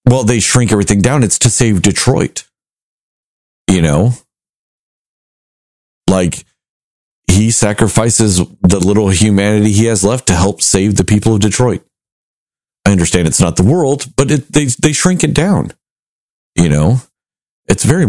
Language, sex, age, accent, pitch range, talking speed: English, male, 40-59, American, 90-120 Hz, 145 wpm